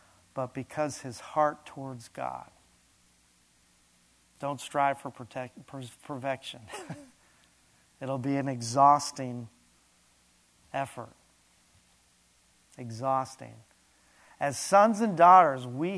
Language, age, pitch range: English, 40-59, 105-150 Hz